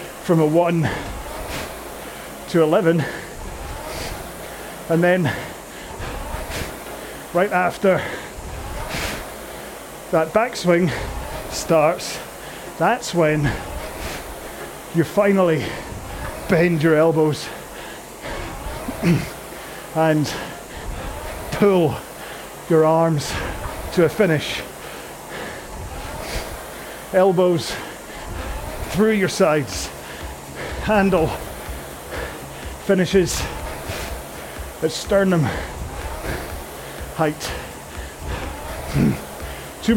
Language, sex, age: English, male, 30-49